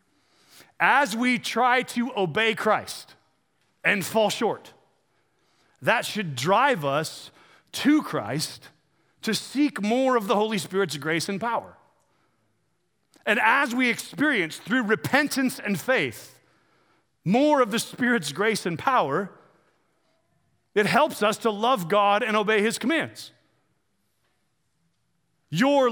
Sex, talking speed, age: male, 120 wpm, 40-59